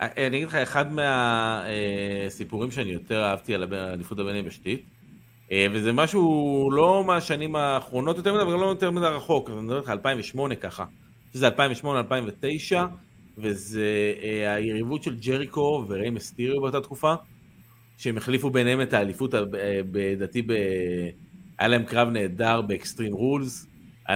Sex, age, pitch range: male, 30-49, 105-140 Hz